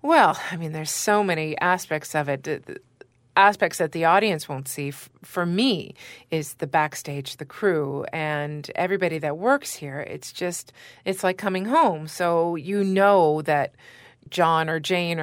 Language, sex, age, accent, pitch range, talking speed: English, female, 30-49, American, 150-205 Hz, 160 wpm